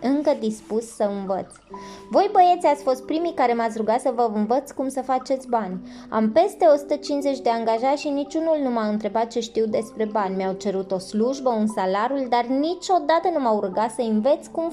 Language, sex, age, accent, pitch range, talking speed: Romanian, female, 20-39, native, 215-280 Hz, 190 wpm